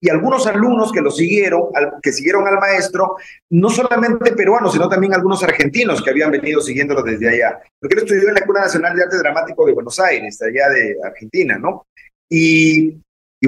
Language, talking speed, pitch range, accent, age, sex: Spanish, 185 wpm, 145-200 Hz, Mexican, 40-59, male